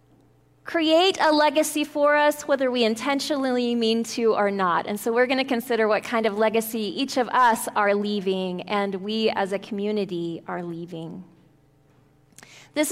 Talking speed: 165 wpm